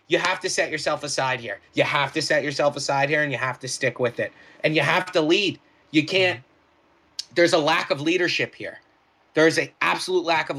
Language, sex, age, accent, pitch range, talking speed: English, male, 30-49, American, 140-170 Hz, 220 wpm